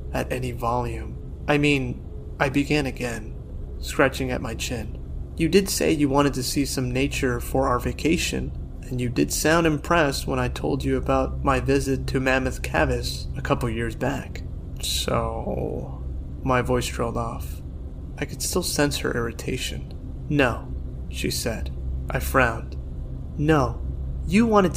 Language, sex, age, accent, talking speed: English, male, 20-39, American, 150 wpm